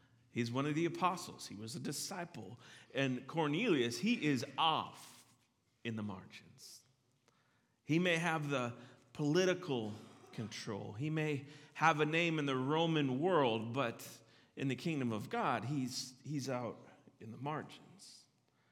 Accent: American